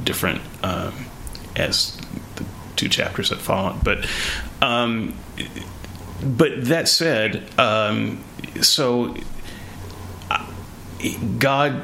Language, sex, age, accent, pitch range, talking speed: English, male, 30-49, American, 90-115 Hz, 80 wpm